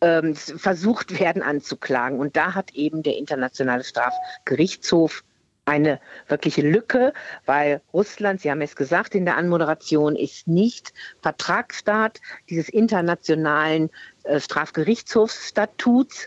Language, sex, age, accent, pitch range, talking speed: German, female, 50-69, German, 150-195 Hz, 100 wpm